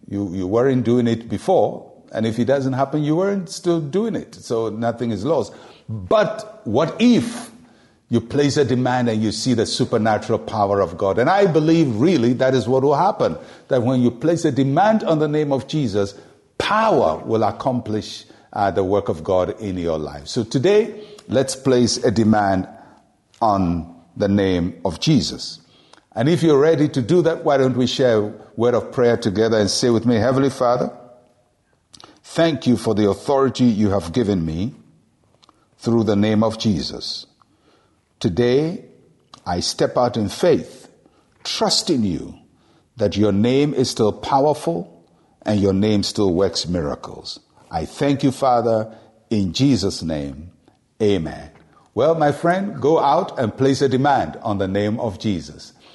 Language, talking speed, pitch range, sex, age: English, 165 wpm, 105-140 Hz, male, 60-79